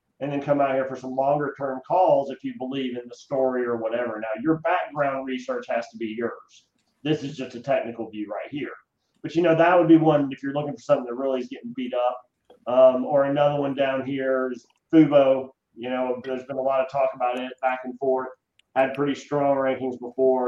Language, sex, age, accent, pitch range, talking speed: English, male, 40-59, American, 125-150 Hz, 230 wpm